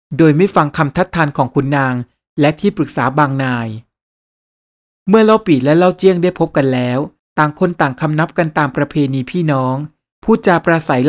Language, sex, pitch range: Thai, male, 140-175 Hz